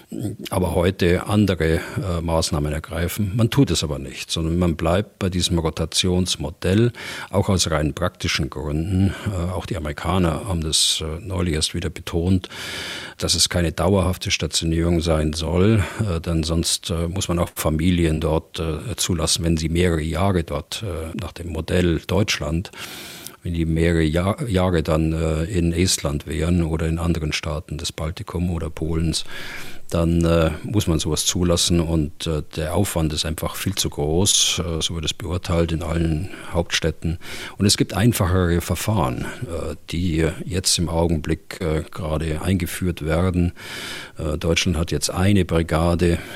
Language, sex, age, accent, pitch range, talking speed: German, male, 40-59, German, 80-90 Hz, 155 wpm